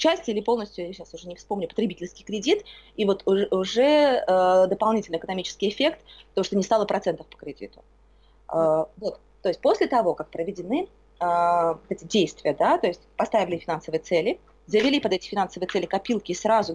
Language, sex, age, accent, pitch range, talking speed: Russian, female, 20-39, native, 175-245 Hz, 180 wpm